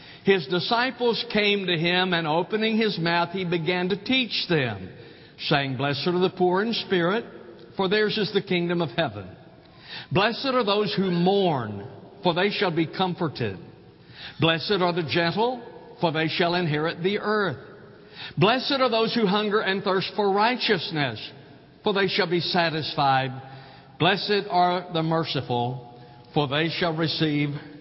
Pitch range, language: 155-210 Hz, English